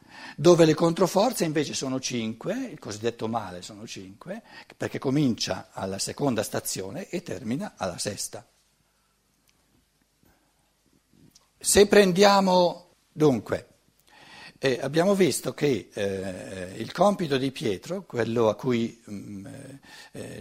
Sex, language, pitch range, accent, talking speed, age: male, Italian, 120-180 Hz, native, 105 wpm, 60-79